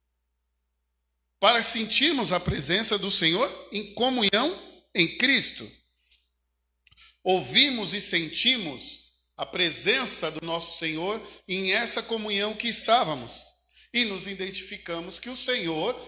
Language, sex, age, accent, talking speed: Portuguese, male, 50-69, Brazilian, 110 wpm